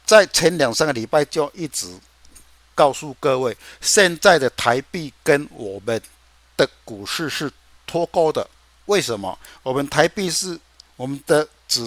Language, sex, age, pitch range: Chinese, male, 60-79, 100-155 Hz